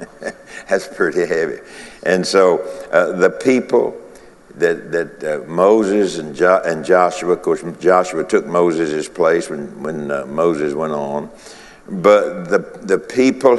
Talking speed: 140 wpm